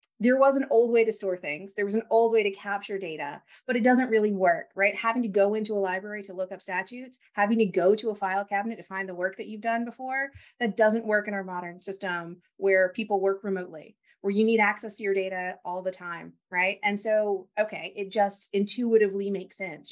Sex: female